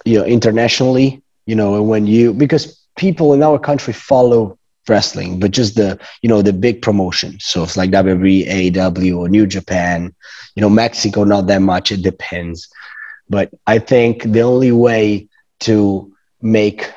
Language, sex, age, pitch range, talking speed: English, male, 30-49, 95-110 Hz, 165 wpm